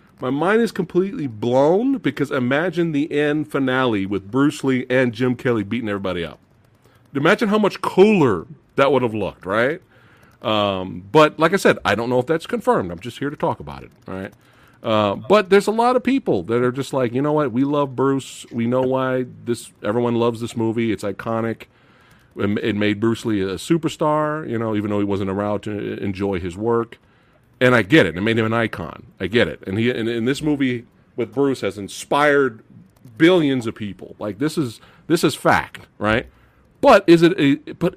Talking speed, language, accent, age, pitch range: 200 wpm, English, American, 40-59, 105-150 Hz